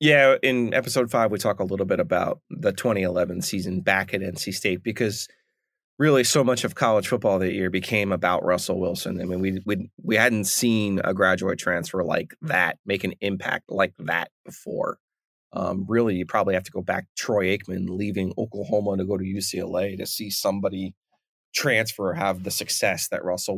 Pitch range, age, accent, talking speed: 100-120 Hz, 30-49, American, 190 wpm